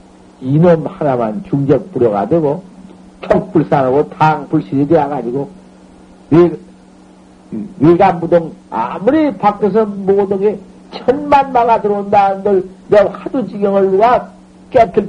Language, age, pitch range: Korean, 60-79, 140-205 Hz